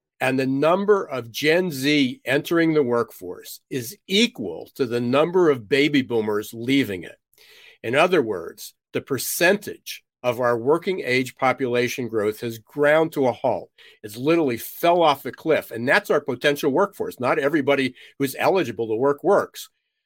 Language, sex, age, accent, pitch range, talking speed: English, male, 50-69, American, 125-155 Hz, 160 wpm